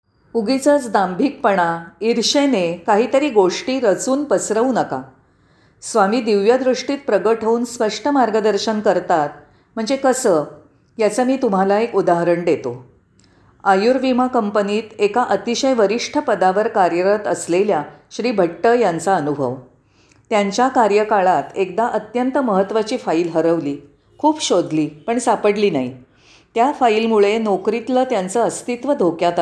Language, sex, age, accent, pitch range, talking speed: Marathi, female, 40-59, native, 160-240 Hz, 110 wpm